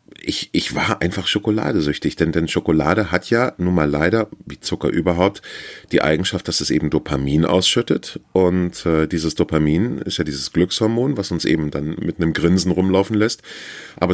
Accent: German